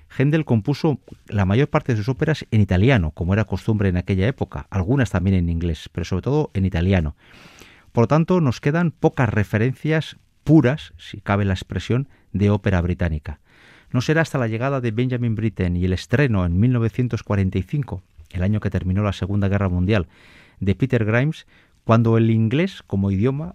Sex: male